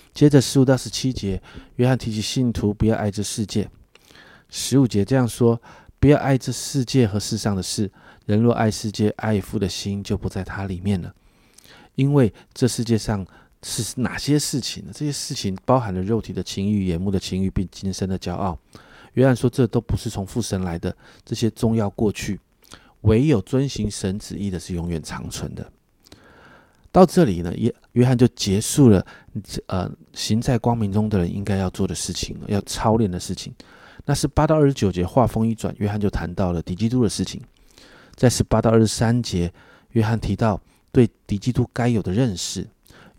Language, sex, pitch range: Chinese, male, 100-130 Hz